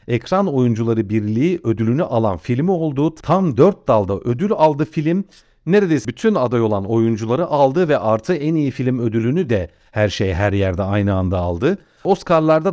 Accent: native